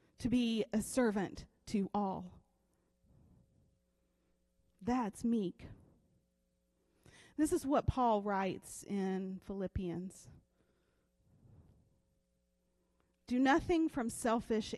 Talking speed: 75 wpm